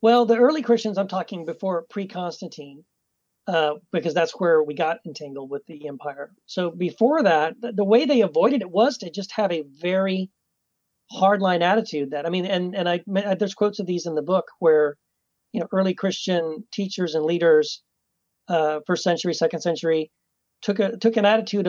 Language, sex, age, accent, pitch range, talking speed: English, male, 40-59, American, 170-220 Hz, 175 wpm